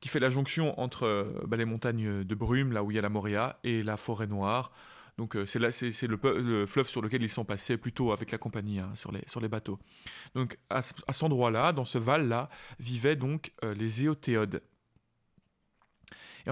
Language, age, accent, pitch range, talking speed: French, 30-49, French, 120-150 Hz, 220 wpm